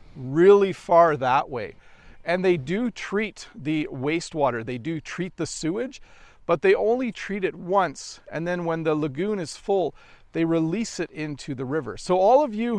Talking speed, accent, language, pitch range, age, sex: 180 wpm, American, English, 145-190 Hz, 40-59, male